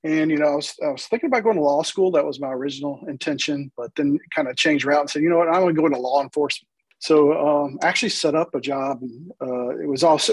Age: 40-59